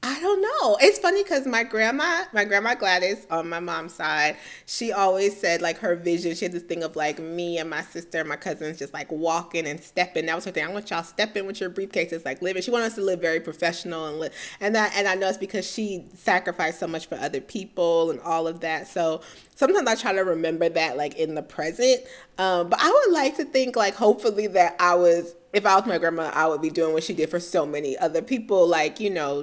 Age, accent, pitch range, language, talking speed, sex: 30-49, American, 165-215 Hz, English, 250 wpm, female